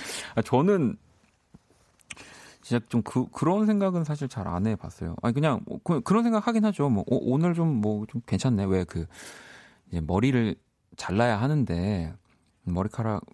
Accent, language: native, Korean